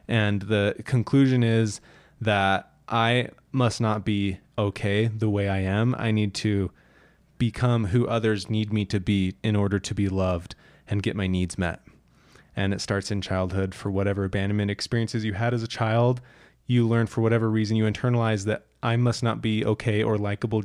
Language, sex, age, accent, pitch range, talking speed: English, male, 20-39, American, 100-115 Hz, 185 wpm